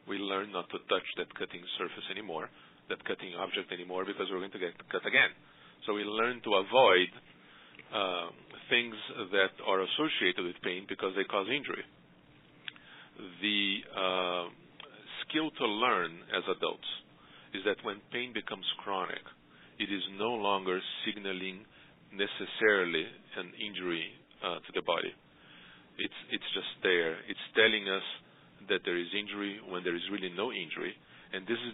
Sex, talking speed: male, 155 wpm